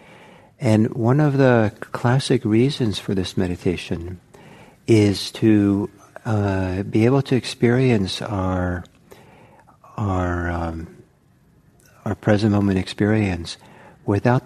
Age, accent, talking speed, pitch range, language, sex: 60-79, American, 90 wpm, 90-115 Hz, English, male